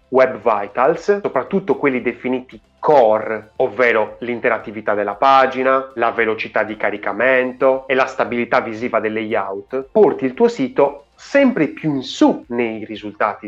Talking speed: 135 wpm